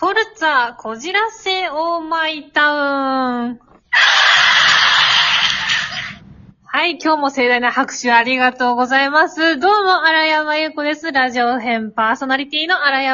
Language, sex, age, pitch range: Japanese, female, 20-39, 245-330 Hz